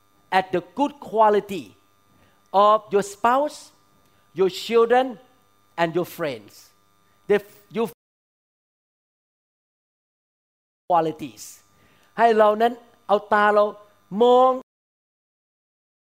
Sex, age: male, 40-59